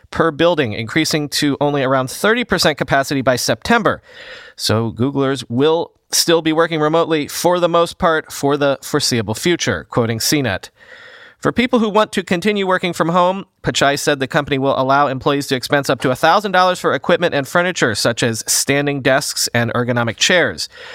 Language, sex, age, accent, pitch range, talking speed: English, male, 40-59, American, 130-175 Hz, 170 wpm